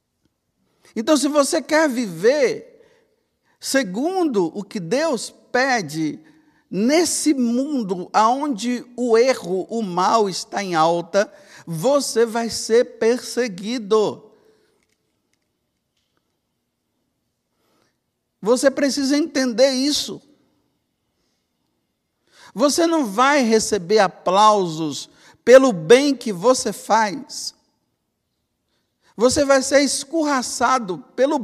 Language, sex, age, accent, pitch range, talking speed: Portuguese, male, 50-69, Brazilian, 220-285 Hz, 80 wpm